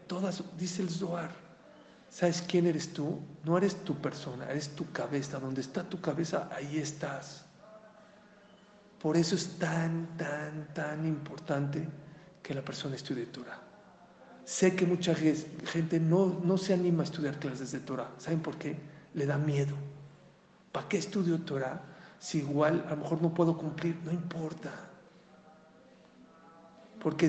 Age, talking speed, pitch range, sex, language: 50-69, 145 wpm, 155-185 Hz, male, English